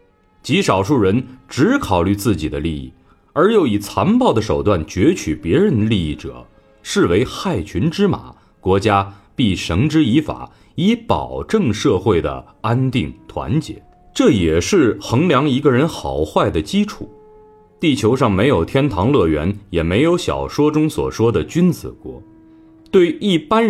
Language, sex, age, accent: Chinese, male, 30-49, native